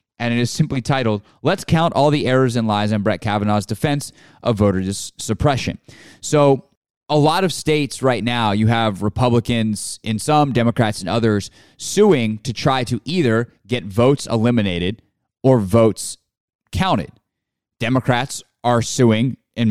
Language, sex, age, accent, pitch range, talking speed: English, male, 20-39, American, 110-130 Hz, 150 wpm